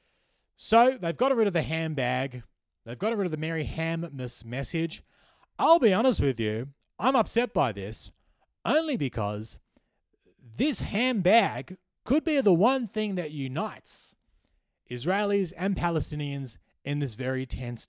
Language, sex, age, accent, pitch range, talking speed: English, male, 30-49, Australian, 125-190 Hz, 155 wpm